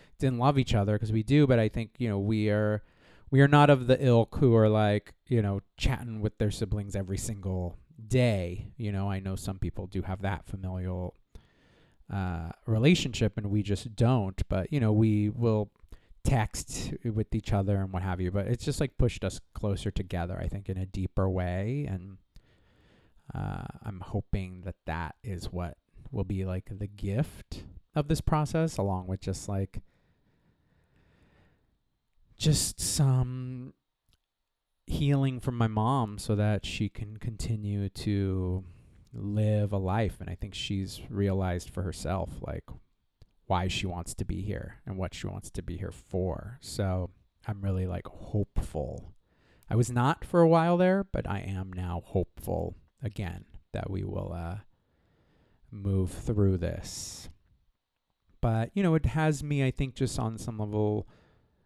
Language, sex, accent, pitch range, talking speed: English, male, American, 95-115 Hz, 165 wpm